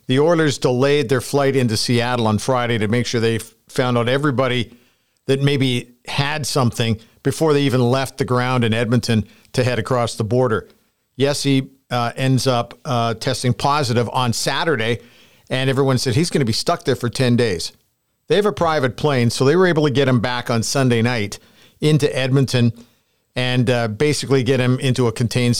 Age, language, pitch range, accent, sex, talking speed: 50-69, English, 120-140 Hz, American, male, 190 wpm